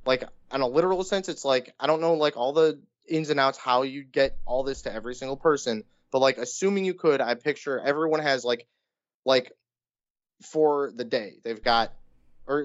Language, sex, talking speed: English, male, 200 wpm